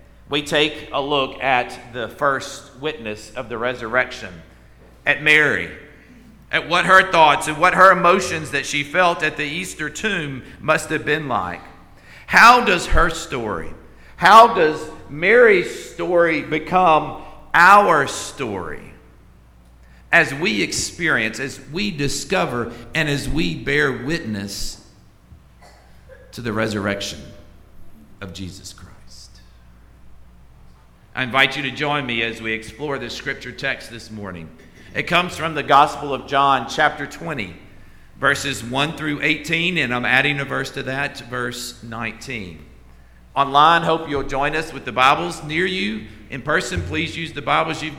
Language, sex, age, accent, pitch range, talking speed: English, male, 50-69, American, 100-155 Hz, 140 wpm